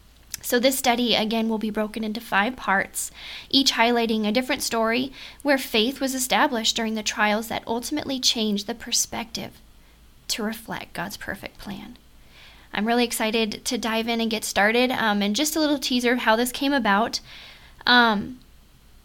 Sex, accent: female, American